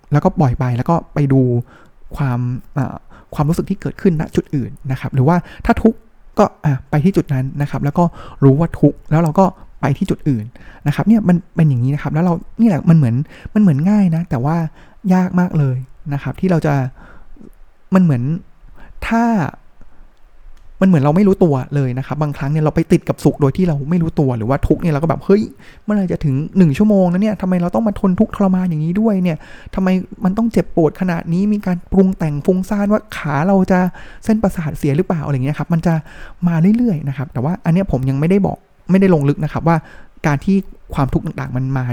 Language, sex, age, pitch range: Thai, male, 20-39, 140-185 Hz